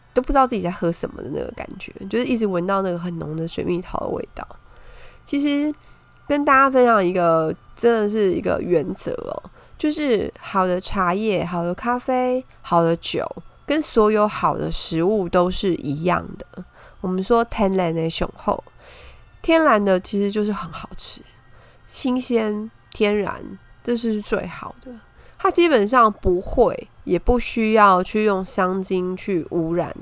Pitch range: 175-230 Hz